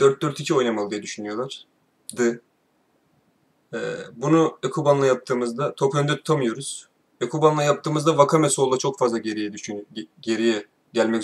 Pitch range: 115-165 Hz